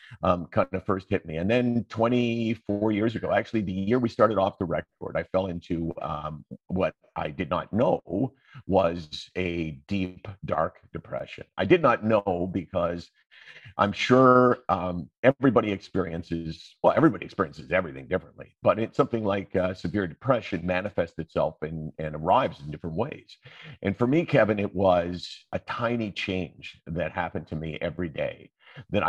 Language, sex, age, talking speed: English, male, 50-69, 160 wpm